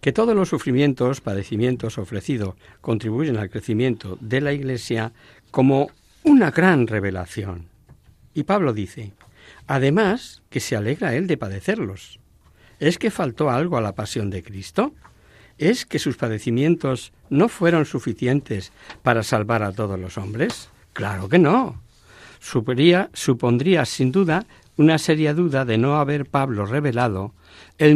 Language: Spanish